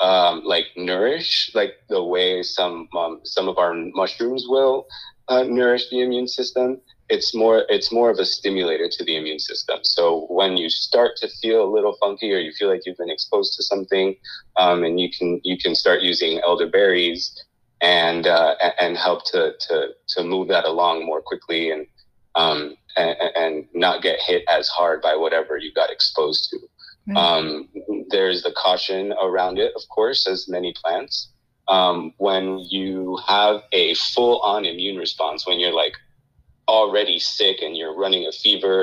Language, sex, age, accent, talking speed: English, male, 30-49, American, 175 wpm